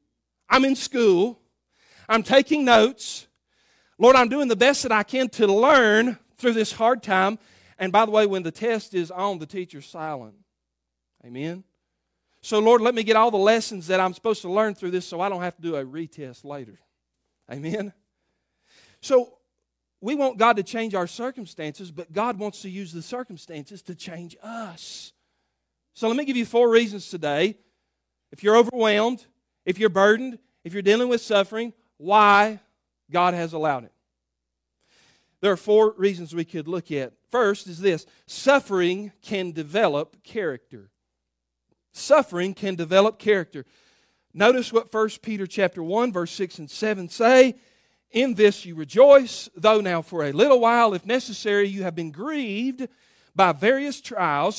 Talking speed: 165 wpm